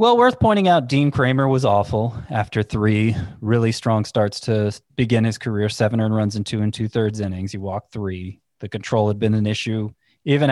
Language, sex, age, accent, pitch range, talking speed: English, male, 30-49, American, 105-135 Hz, 200 wpm